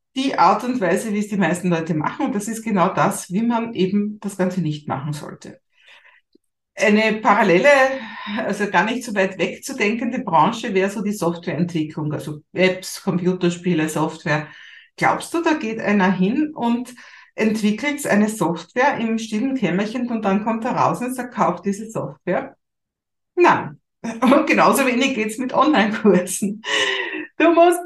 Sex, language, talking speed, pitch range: female, German, 155 wpm, 175-230 Hz